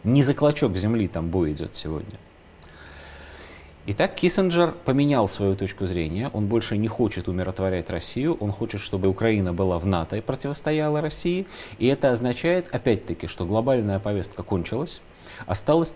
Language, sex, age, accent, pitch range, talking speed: Russian, male, 30-49, native, 95-130 Hz, 145 wpm